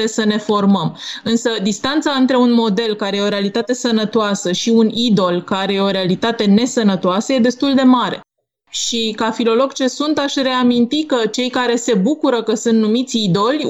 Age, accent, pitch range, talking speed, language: 20-39, native, 220-255 Hz, 180 wpm, Romanian